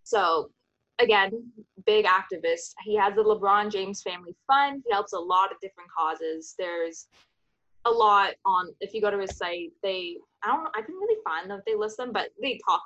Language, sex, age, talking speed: English, female, 10-29, 205 wpm